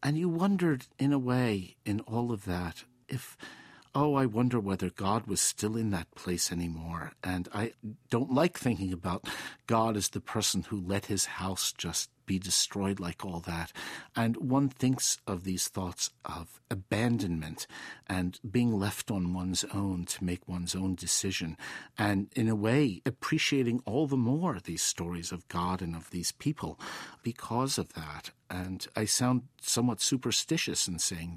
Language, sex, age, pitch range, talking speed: English, male, 50-69, 95-135 Hz, 165 wpm